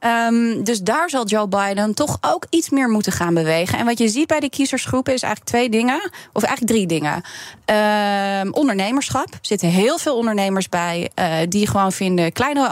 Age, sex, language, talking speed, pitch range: 30-49, female, Dutch, 185 wpm, 180-235 Hz